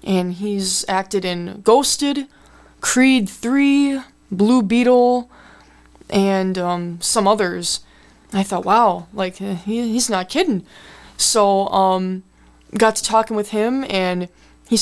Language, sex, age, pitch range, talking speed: English, female, 20-39, 185-225 Hz, 125 wpm